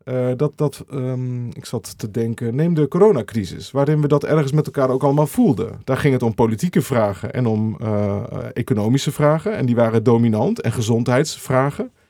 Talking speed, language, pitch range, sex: 185 wpm, Dutch, 115-150 Hz, male